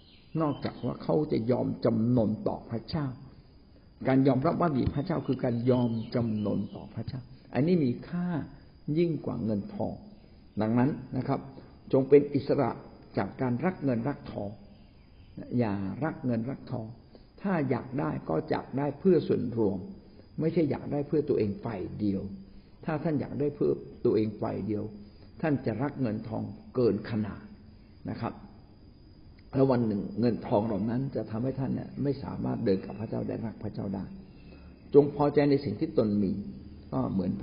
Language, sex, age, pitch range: Thai, male, 60-79, 105-140 Hz